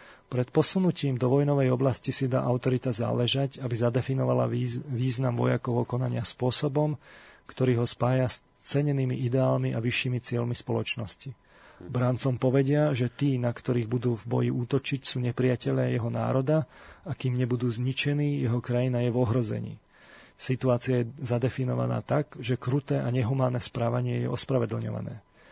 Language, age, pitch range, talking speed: Slovak, 40-59, 120-135 Hz, 140 wpm